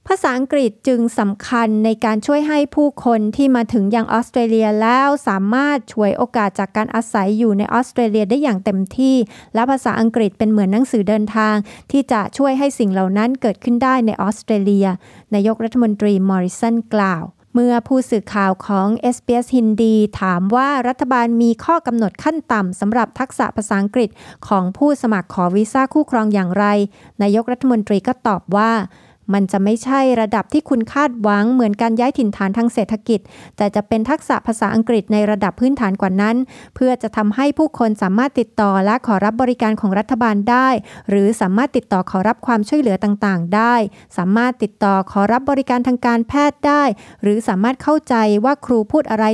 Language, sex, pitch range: Thai, female, 205-245 Hz